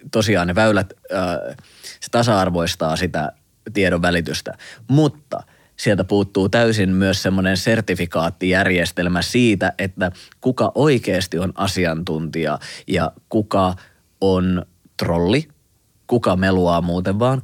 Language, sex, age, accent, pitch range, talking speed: Finnish, male, 30-49, native, 90-105 Hz, 100 wpm